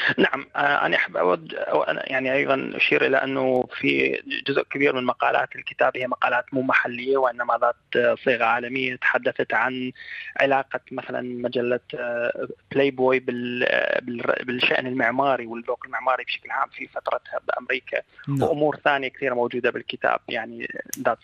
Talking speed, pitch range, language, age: 135 wpm, 125-135 Hz, Arabic, 20-39